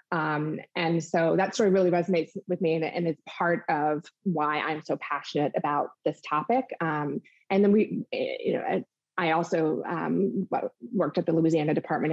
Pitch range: 155-180 Hz